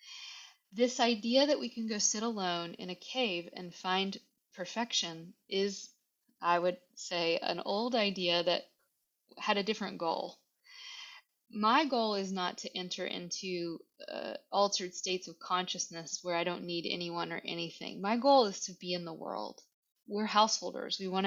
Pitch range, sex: 180-230 Hz, female